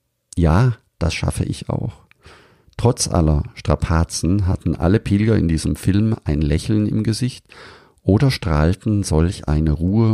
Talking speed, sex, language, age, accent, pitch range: 135 wpm, male, German, 50-69, German, 80-110 Hz